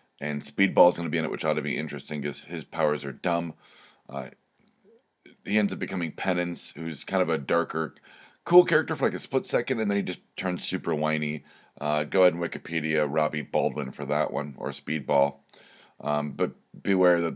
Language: English